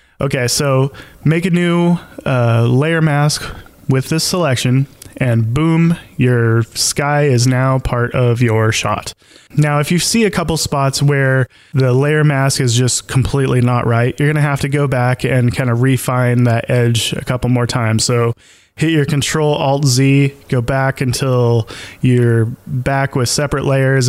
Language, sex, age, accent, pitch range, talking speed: English, male, 20-39, American, 125-150 Hz, 160 wpm